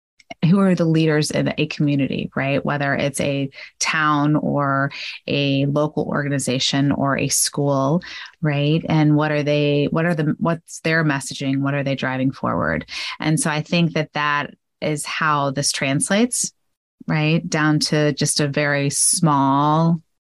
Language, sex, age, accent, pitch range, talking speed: English, female, 30-49, American, 145-170 Hz, 155 wpm